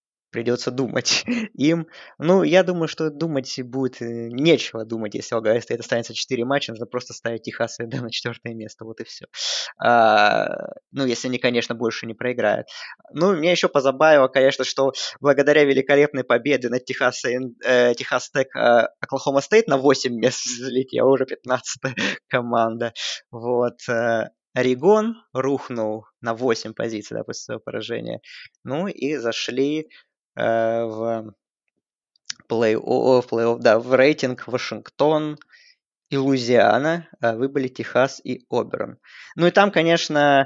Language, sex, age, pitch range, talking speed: Russian, male, 20-39, 120-150 Hz, 135 wpm